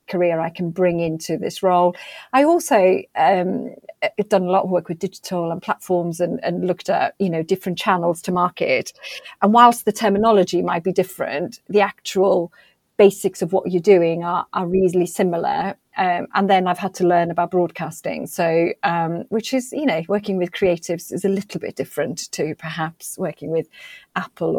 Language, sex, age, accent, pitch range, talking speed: English, female, 40-59, British, 160-185 Hz, 185 wpm